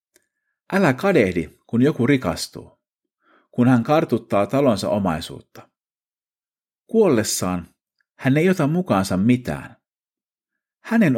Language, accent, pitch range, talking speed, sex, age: Finnish, native, 90-145 Hz, 90 wpm, male, 50-69